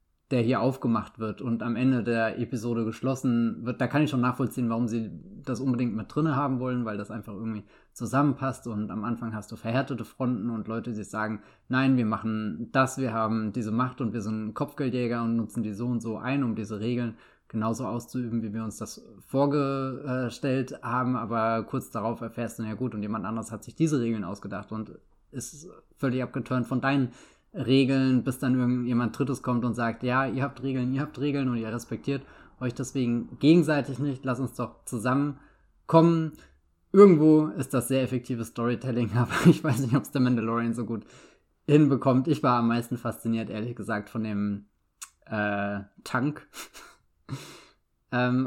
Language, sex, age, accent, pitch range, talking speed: English, male, 20-39, German, 115-130 Hz, 185 wpm